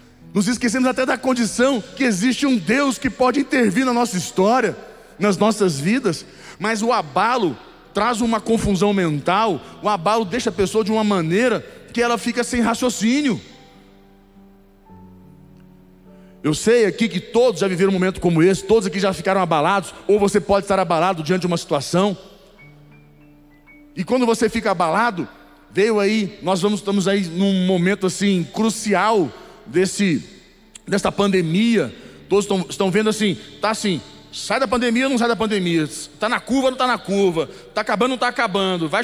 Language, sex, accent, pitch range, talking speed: Portuguese, male, Brazilian, 185-235 Hz, 170 wpm